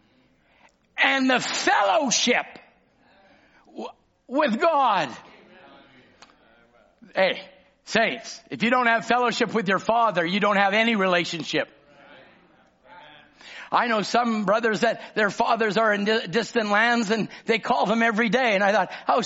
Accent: American